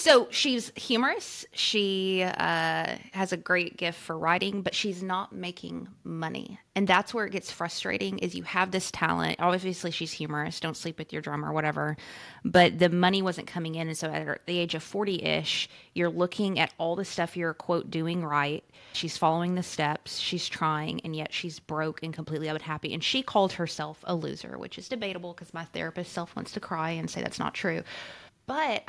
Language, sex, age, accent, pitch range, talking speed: English, female, 20-39, American, 155-190 Hz, 195 wpm